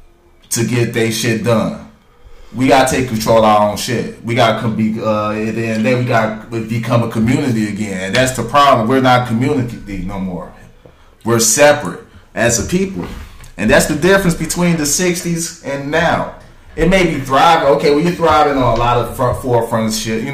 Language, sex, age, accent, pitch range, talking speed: English, male, 20-39, American, 110-135 Hz, 185 wpm